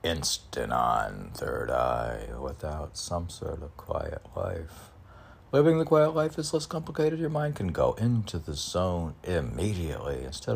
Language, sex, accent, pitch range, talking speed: English, male, American, 85-110 Hz, 150 wpm